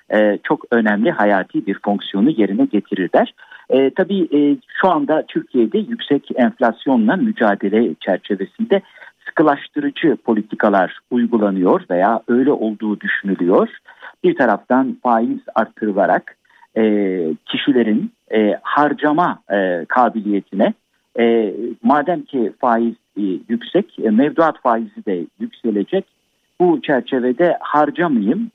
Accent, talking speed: native, 100 wpm